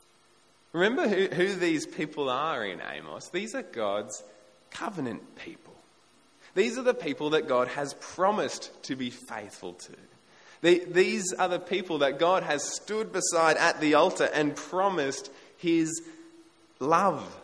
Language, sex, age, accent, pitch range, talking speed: English, male, 20-39, Australian, 115-195 Hz, 140 wpm